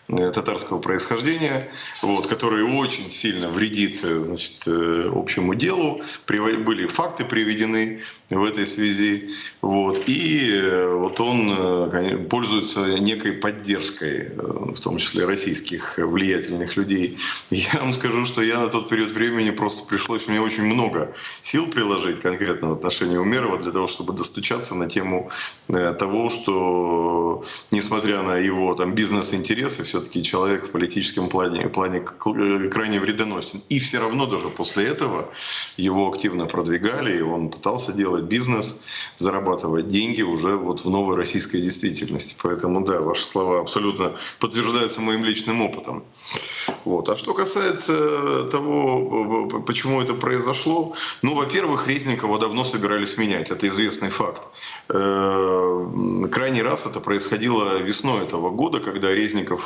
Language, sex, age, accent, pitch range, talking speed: Russian, male, 30-49, native, 90-110 Hz, 120 wpm